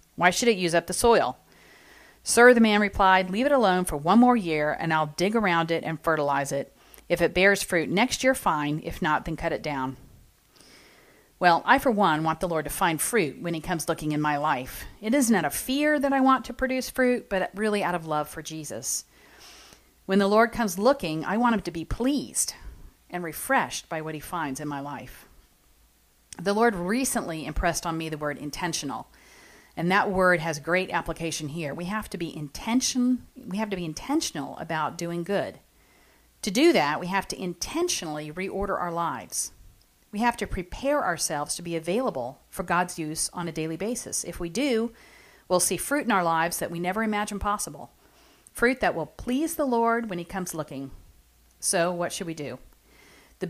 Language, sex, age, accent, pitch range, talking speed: English, female, 40-59, American, 160-225 Hz, 200 wpm